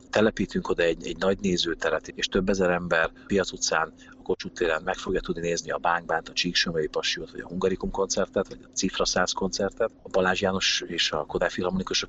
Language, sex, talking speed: Hungarian, male, 190 wpm